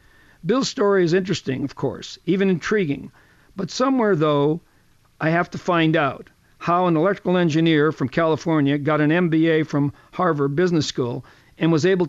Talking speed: 160 wpm